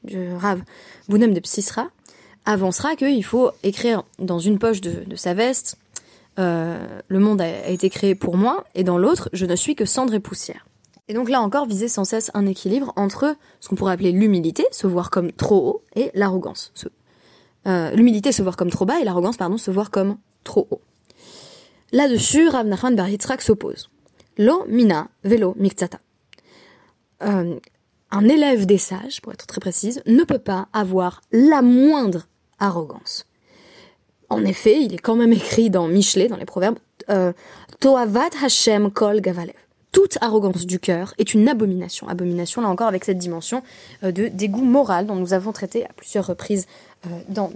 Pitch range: 185-235 Hz